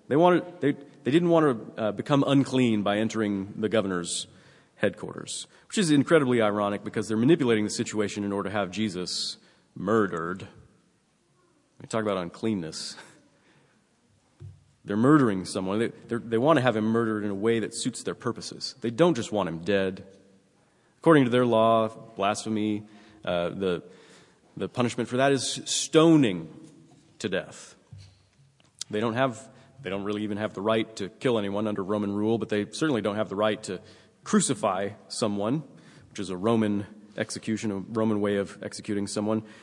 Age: 30-49